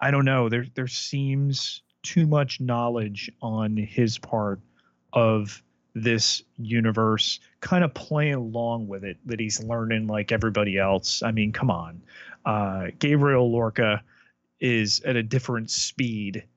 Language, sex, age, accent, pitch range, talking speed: English, male, 30-49, American, 110-125 Hz, 140 wpm